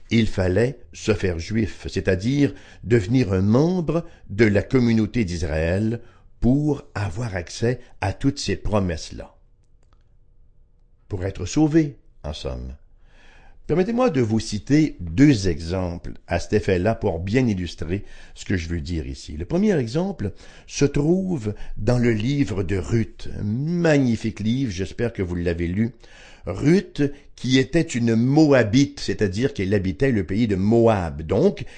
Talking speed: 140 wpm